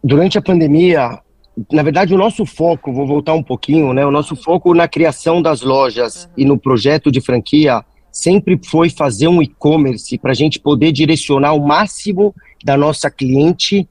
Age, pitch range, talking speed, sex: 40-59, 145-175 Hz, 175 wpm, male